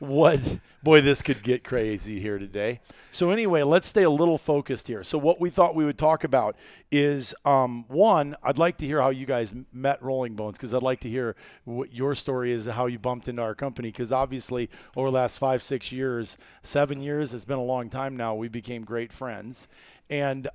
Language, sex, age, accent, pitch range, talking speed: English, male, 40-59, American, 120-145 Hz, 215 wpm